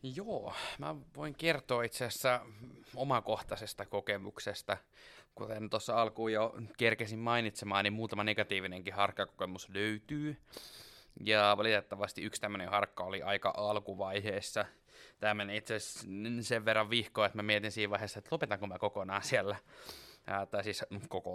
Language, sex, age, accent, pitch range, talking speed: Finnish, male, 20-39, native, 105-125 Hz, 130 wpm